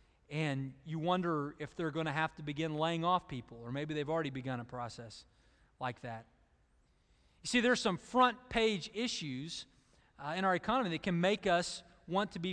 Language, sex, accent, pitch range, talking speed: English, male, American, 150-210 Hz, 185 wpm